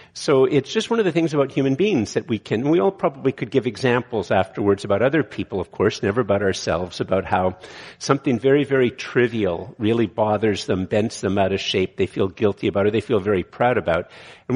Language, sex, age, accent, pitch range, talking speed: English, male, 50-69, American, 105-135 Hz, 225 wpm